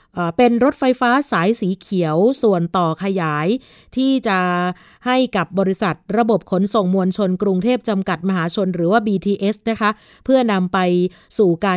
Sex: female